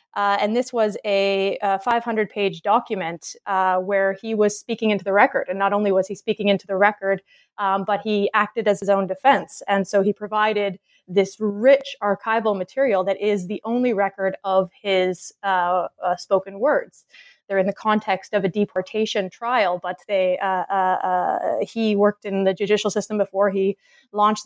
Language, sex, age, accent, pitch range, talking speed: English, female, 20-39, American, 195-220 Hz, 180 wpm